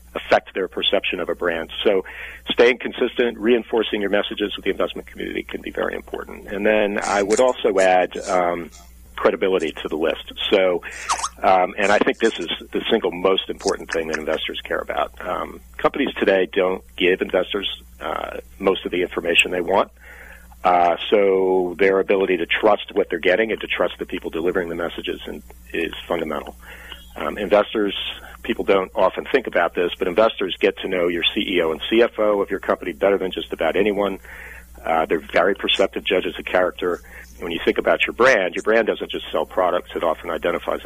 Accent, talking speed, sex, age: American, 185 wpm, male, 40-59